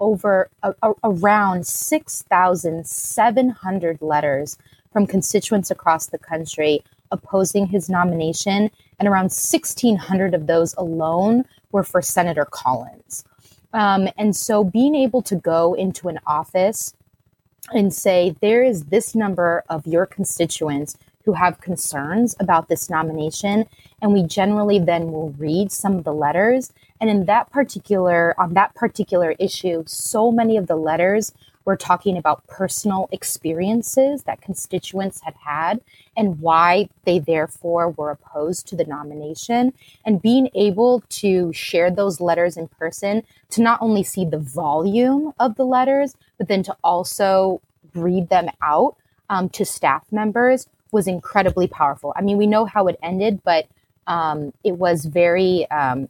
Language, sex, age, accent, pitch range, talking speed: English, female, 20-39, American, 160-205 Hz, 145 wpm